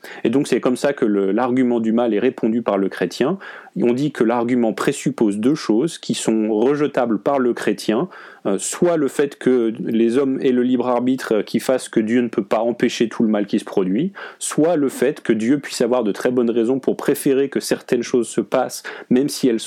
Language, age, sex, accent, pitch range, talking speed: French, 30-49, male, French, 110-125 Hz, 220 wpm